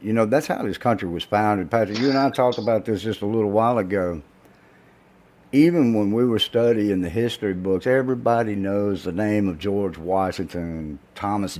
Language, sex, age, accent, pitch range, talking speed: English, male, 60-79, American, 95-125 Hz, 185 wpm